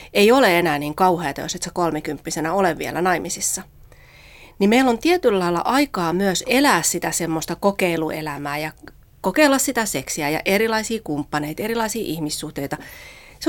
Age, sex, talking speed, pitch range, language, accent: 30-49, female, 140 wpm, 155-240 Hz, Finnish, native